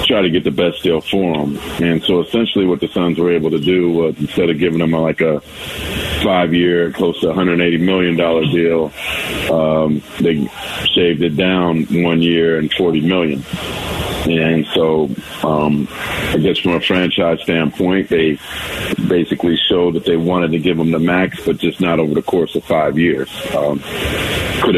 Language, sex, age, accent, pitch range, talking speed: English, male, 40-59, American, 80-90 Hz, 180 wpm